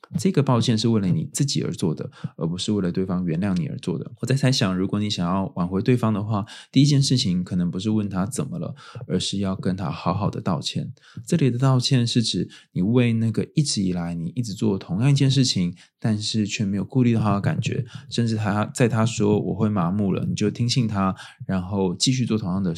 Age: 20-39